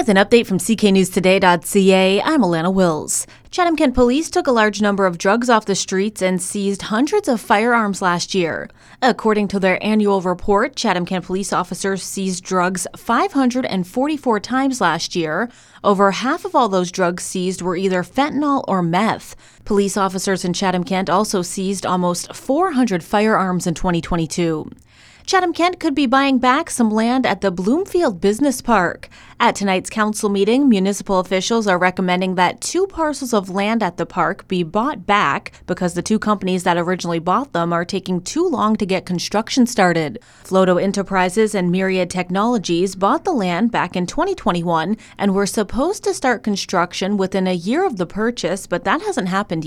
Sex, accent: female, American